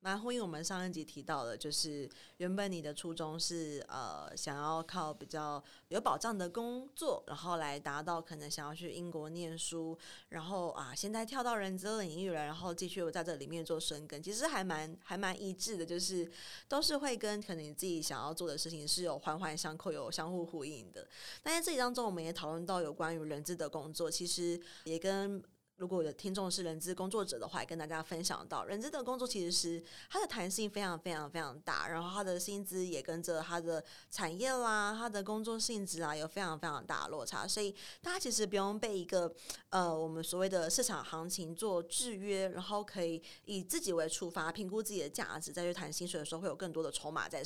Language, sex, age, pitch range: Chinese, female, 20-39, 160-200 Hz